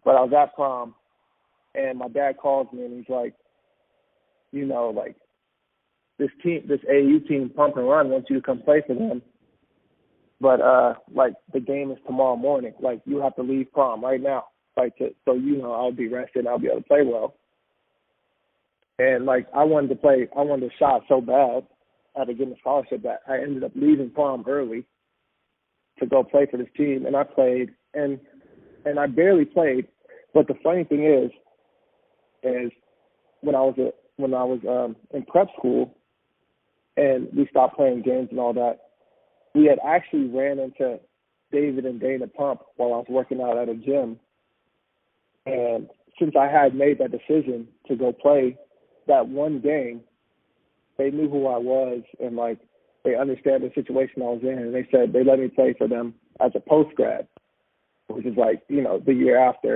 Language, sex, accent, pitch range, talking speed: English, male, American, 125-145 Hz, 185 wpm